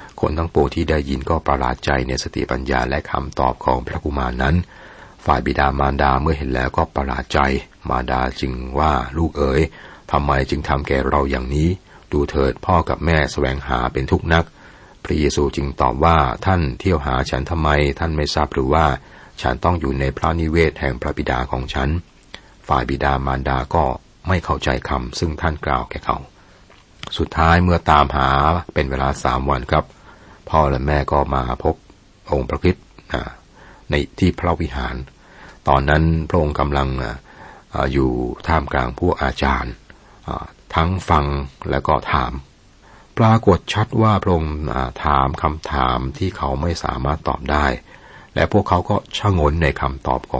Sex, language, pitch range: male, Thai, 65-80 Hz